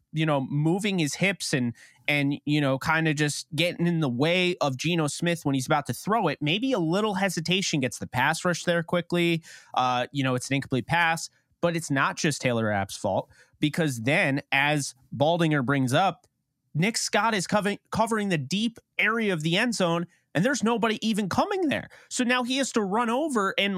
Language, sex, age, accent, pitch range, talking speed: English, male, 30-49, American, 140-195 Hz, 205 wpm